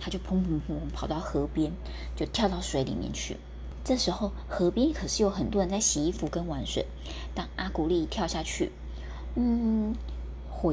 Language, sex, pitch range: Chinese, female, 150-230 Hz